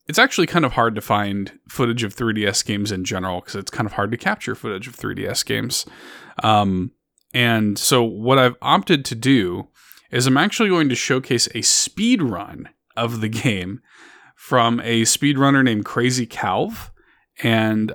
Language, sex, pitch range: English, male, 105-130 Hz